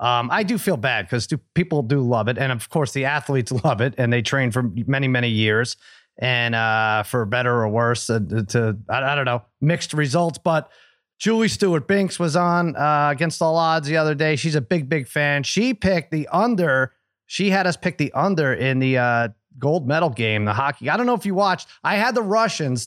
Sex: male